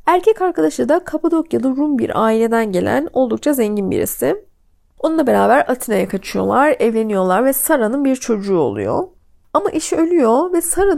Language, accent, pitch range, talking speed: Turkish, native, 245-360 Hz, 140 wpm